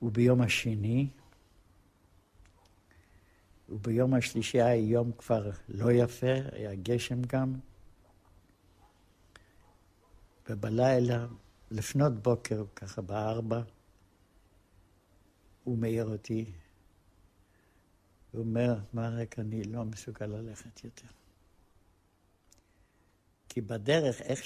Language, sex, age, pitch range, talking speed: Hebrew, male, 60-79, 100-135 Hz, 75 wpm